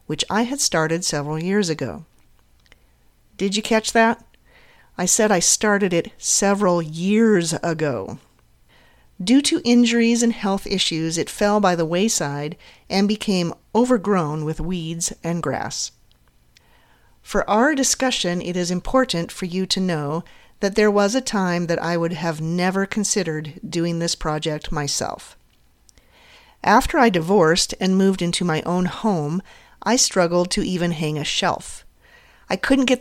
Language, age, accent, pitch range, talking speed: English, 40-59, American, 165-210 Hz, 145 wpm